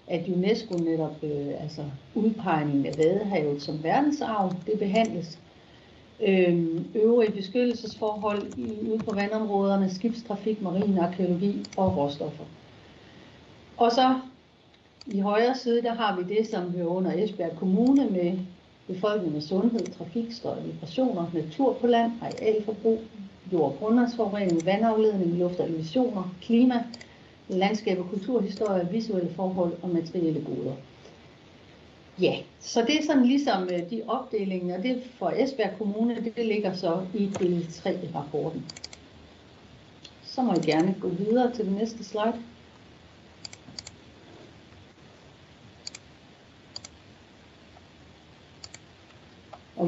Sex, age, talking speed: female, 60-79, 110 wpm